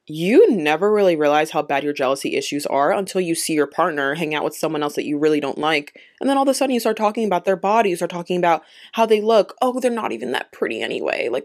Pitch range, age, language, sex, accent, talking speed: 155-225 Hz, 20-39, English, female, American, 265 wpm